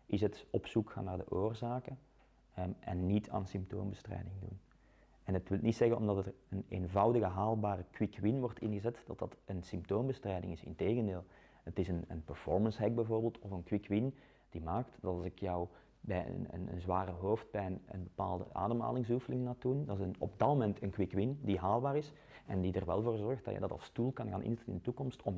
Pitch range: 95-115 Hz